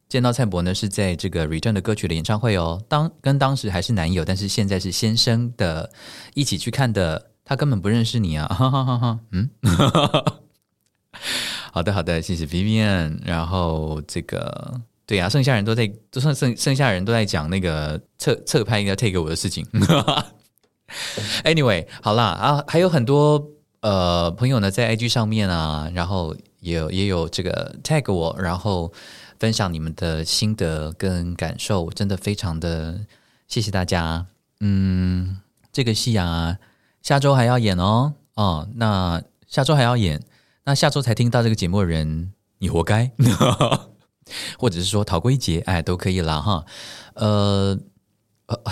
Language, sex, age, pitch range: Chinese, male, 20-39, 90-120 Hz